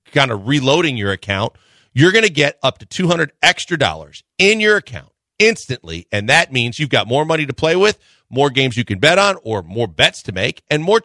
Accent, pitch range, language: American, 120-150 Hz, English